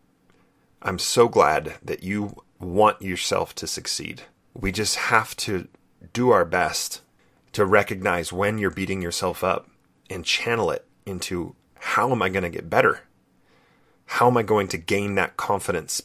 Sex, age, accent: male, 30-49, American